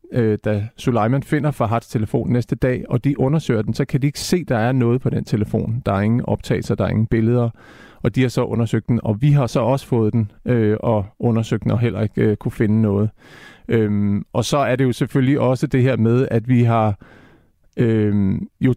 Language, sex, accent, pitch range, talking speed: Danish, male, native, 110-130 Hz, 215 wpm